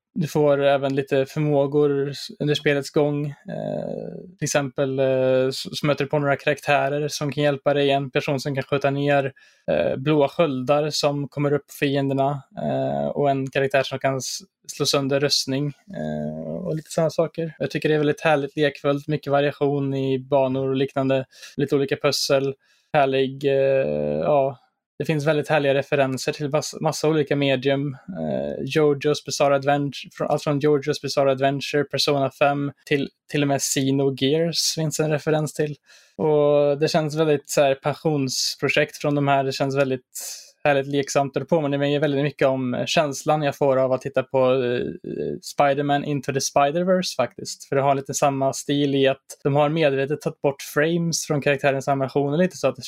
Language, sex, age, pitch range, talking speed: Swedish, male, 20-39, 135-150 Hz, 170 wpm